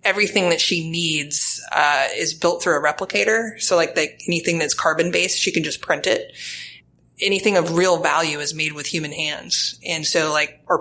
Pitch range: 150-175 Hz